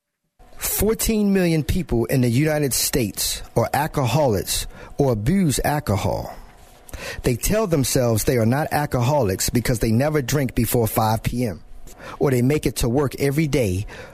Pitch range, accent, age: 110-150 Hz, American, 50-69